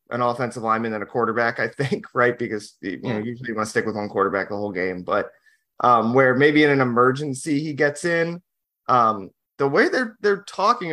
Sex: male